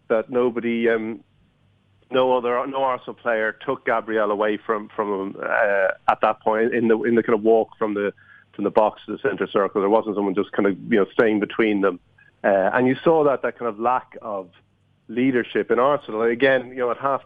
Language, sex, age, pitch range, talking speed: English, male, 40-59, 110-125 Hz, 220 wpm